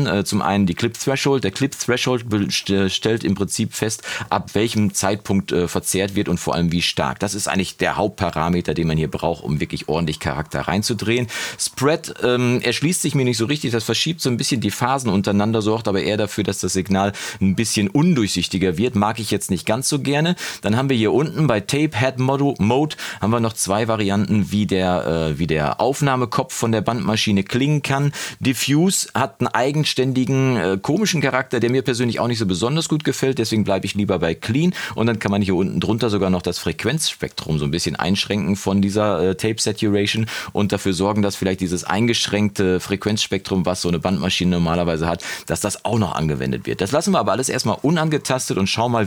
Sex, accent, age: male, German, 40-59